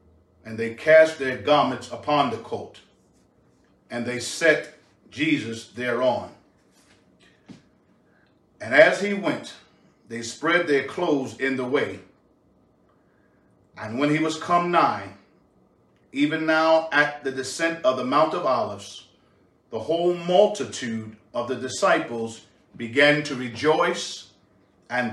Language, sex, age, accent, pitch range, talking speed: English, male, 40-59, American, 115-160 Hz, 120 wpm